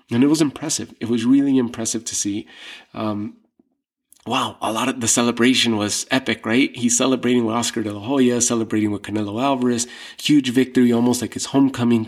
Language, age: English, 30-49